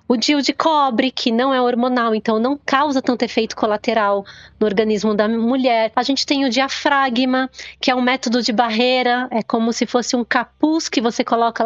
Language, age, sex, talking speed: Portuguese, 20-39, female, 195 wpm